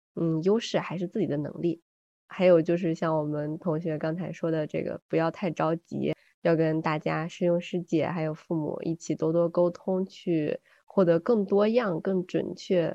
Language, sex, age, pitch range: Chinese, female, 20-39, 165-195 Hz